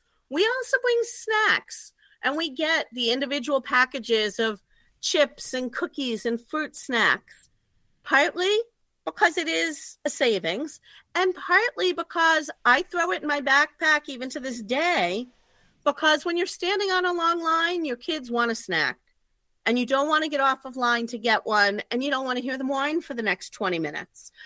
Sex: female